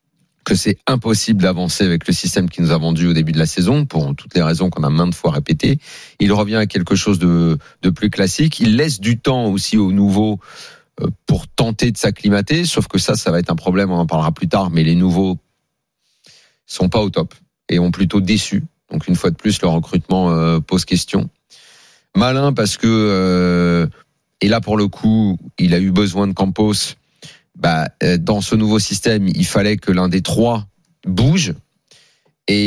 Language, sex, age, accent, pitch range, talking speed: French, male, 40-59, French, 90-115 Hz, 195 wpm